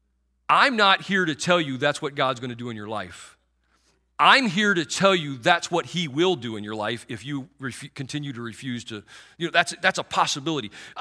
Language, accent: English, American